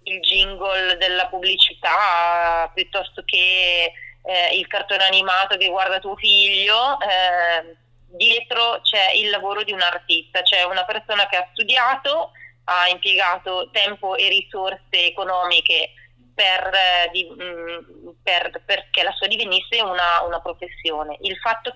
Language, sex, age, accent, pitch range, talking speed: Italian, female, 20-39, native, 175-205 Hz, 125 wpm